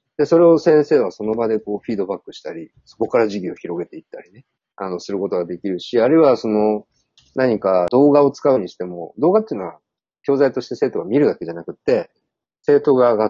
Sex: male